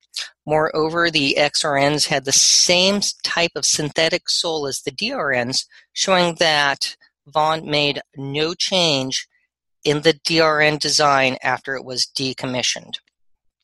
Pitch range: 135-170 Hz